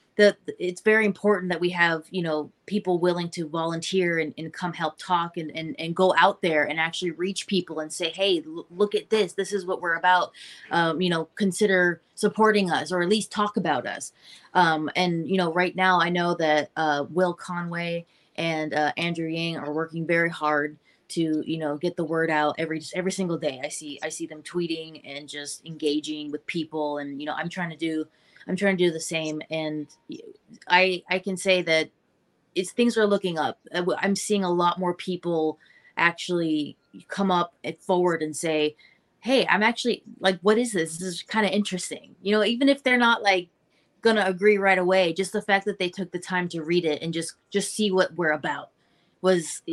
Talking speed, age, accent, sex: 210 wpm, 20-39, American, female